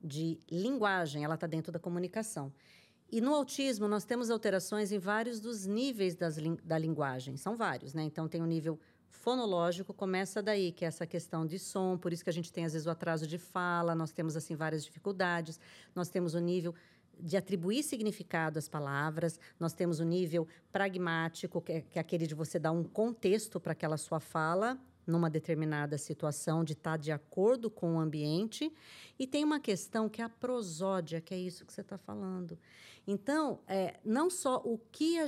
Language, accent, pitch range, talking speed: Portuguese, Brazilian, 165-220 Hz, 195 wpm